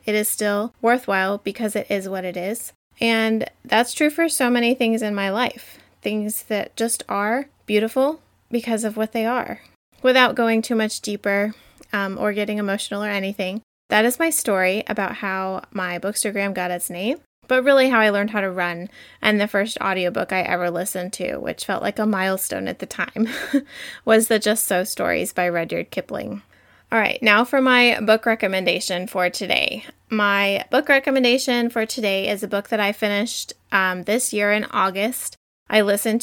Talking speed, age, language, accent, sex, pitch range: 185 wpm, 20-39, English, American, female, 195-235 Hz